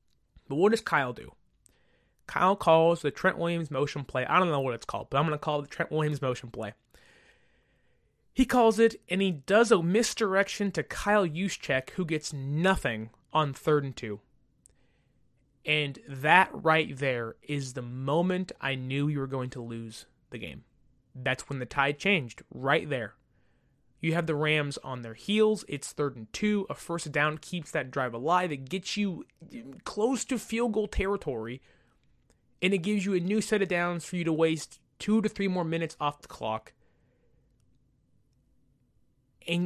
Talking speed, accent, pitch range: 175 wpm, American, 135-200 Hz